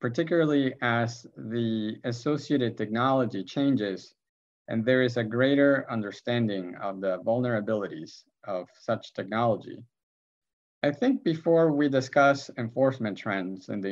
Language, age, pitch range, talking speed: English, 50-69, 100-135 Hz, 115 wpm